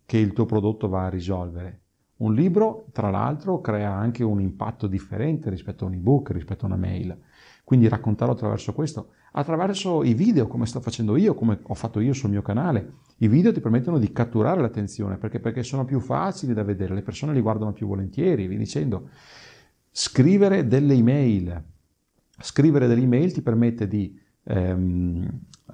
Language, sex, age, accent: Italian, male, 40-59, native